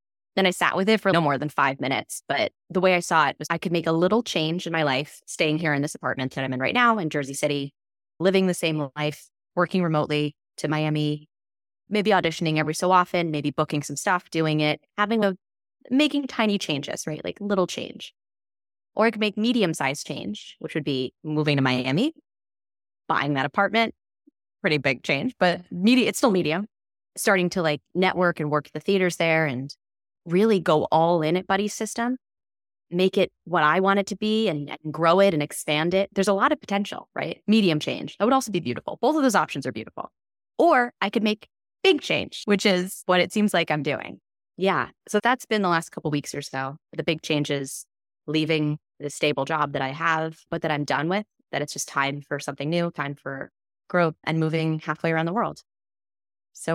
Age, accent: 20-39, American